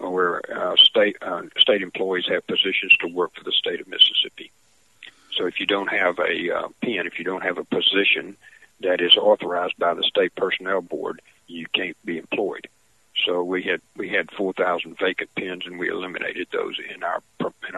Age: 50-69